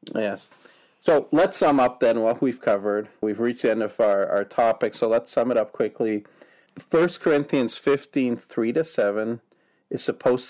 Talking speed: 175 wpm